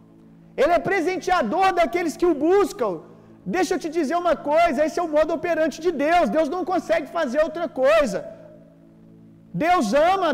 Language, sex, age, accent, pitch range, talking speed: Gujarati, male, 40-59, Brazilian, 295-360 Hz, 165 wpm